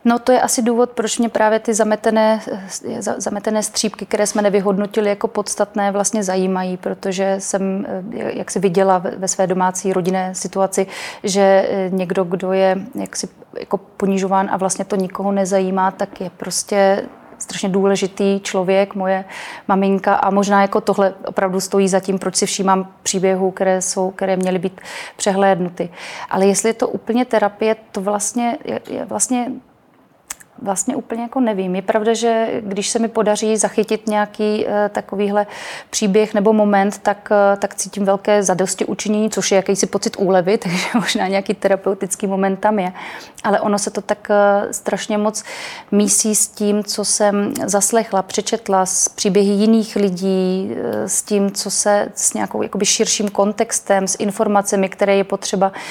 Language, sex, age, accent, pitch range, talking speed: Czech, female, 30-49, native, 195-215 Hz, 150 wpm